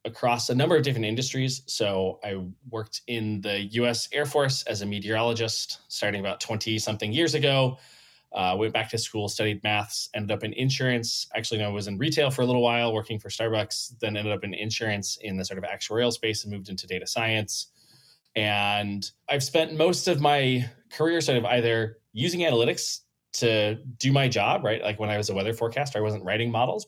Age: 20-39